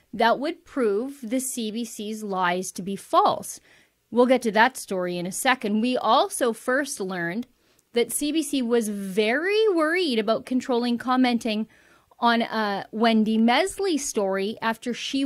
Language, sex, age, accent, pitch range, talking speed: English, female, 30-49, American, 220-265 Hz, 140 wpm